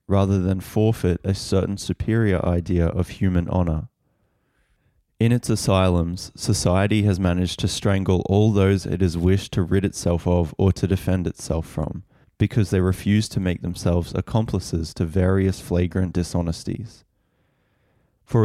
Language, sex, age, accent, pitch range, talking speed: English, male, 20-39, Australian, 90-100 Hz, 145 wpm